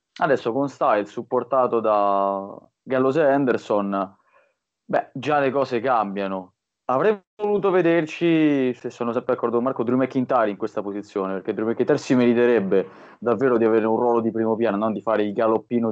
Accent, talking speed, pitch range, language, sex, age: native, 170 wpm, 105-135 Hz, Italian, male, 20-39